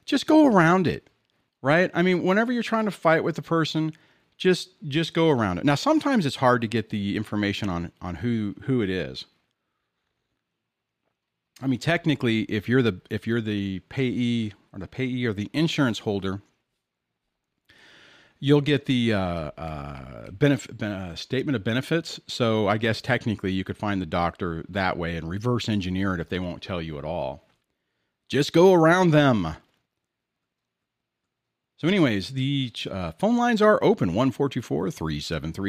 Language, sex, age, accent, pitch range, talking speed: English, male, 40-59, American, 100-155 Hz, 165 wpm